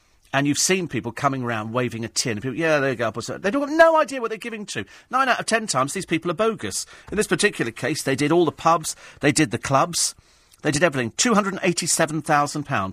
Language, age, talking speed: English, 40-59, 235 wpm